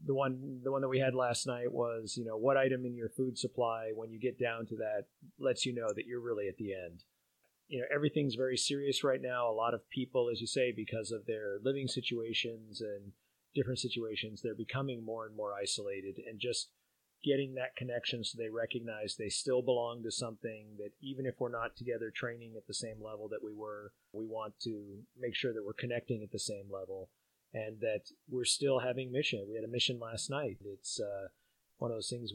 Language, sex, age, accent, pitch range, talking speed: English, male, 30-49, American, 110-130 Hz, 220 wpm